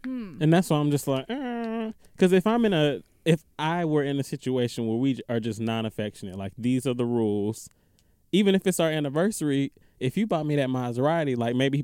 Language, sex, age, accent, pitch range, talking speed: English, male, 20-39, American, 105-145 Hz, 215 wpm